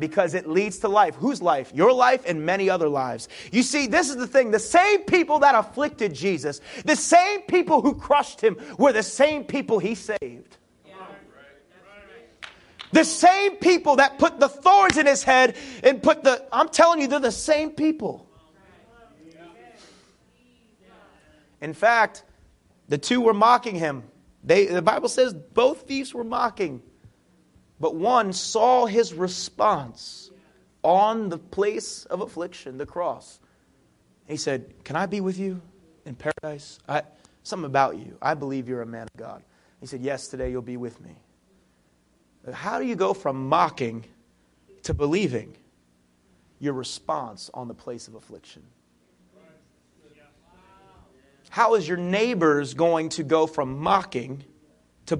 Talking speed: 150 wpm